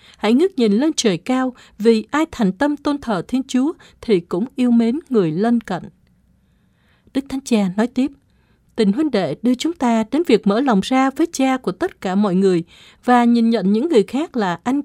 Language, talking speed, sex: Vietnamese, 210 wpm, female